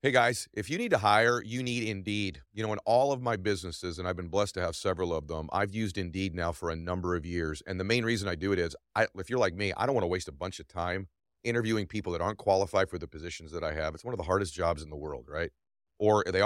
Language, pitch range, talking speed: English, 90-110 Hz, 290 wpm